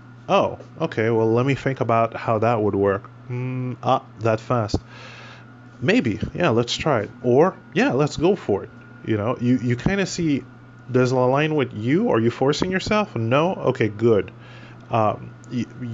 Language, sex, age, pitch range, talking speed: English, male, 20-39, 115-130 Hz, 175 wpm